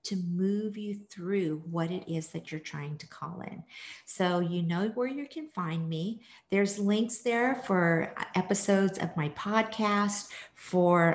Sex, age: female, 50-69